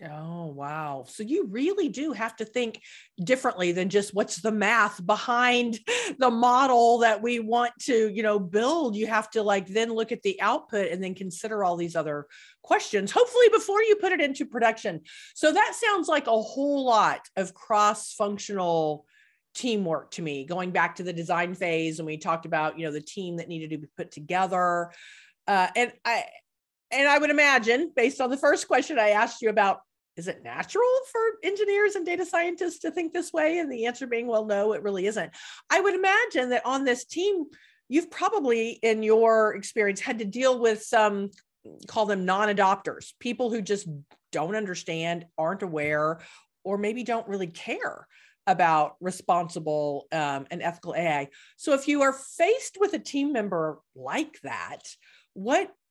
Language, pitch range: English, 180-275 Hz